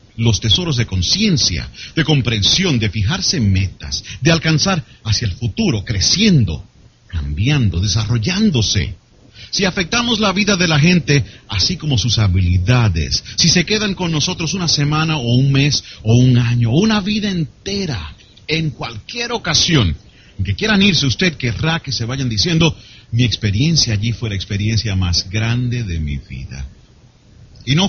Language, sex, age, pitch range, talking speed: Spanish, male, 40-59, 100-155 Hz, 150 wpm